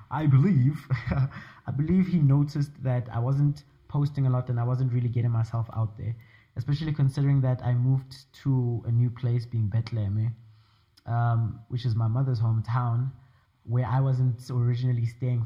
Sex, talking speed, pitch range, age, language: male, 165 wpm, 115-130 Hz, 20-39, English